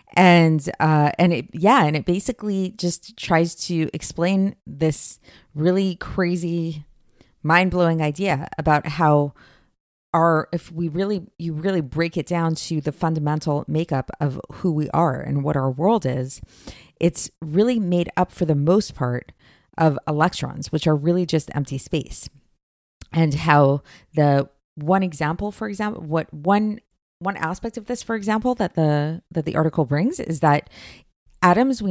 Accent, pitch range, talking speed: American, 150-180 Hz, 155 wpm